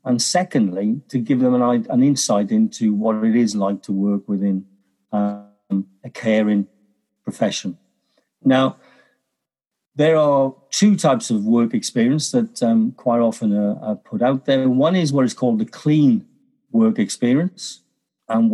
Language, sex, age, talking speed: English, male, 50-69, 150 wpm